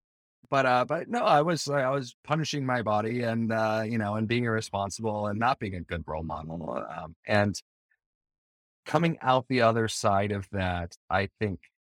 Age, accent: 30-49, American